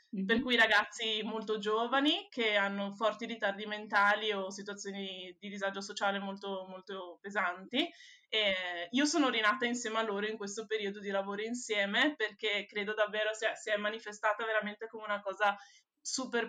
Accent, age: native, 20-39